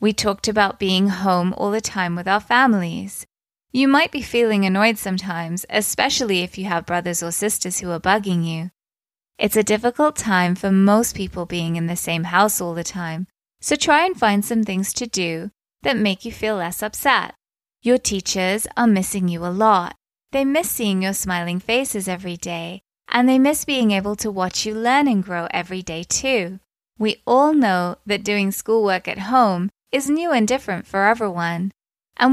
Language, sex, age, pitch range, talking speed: English, female, 20-39, 185-240 Hz, 185 wpm